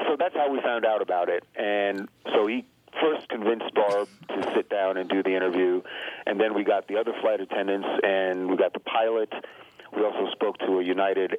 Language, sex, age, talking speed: English, male, 50-69, 210 wpm